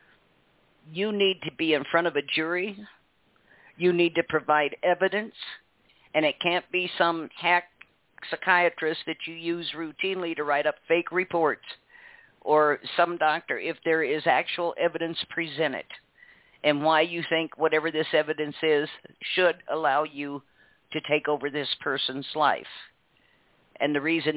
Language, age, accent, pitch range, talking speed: English, 50-69, American, 150-175 Hz, 145 wpm